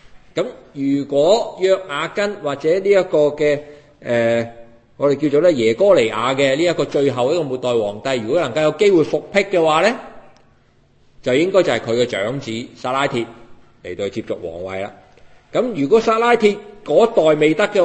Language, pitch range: Chinese, 115-185 Hz